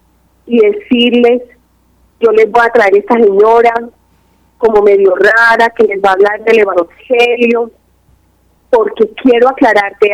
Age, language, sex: 30-49, Spanish, female